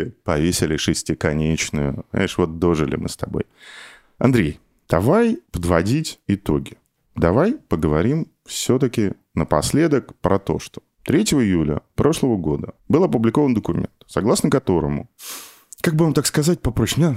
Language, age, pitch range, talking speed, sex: Russian, 20-39, 85-115 Hz, 120 wpm, male